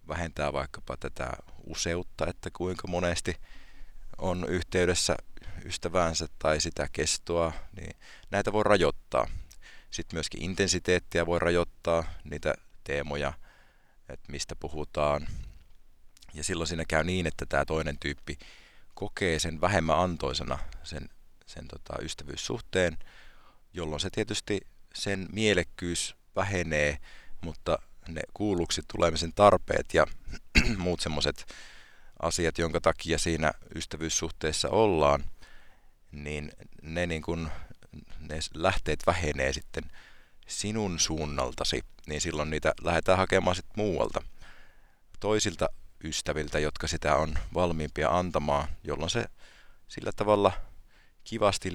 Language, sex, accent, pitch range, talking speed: Finnish, male, native, 75-90 Hz, 105 wpm